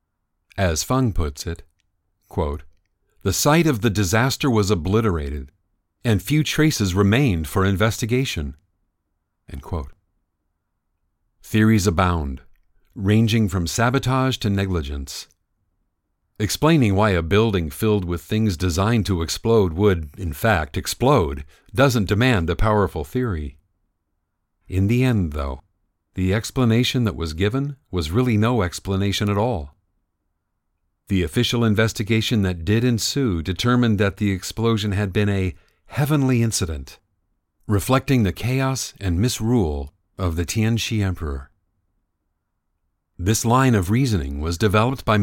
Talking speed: 120 wpm